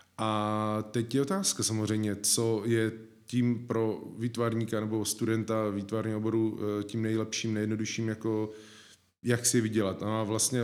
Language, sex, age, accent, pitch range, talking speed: Czech, male, 20-39, native, 105-115 Hz, 135 wpm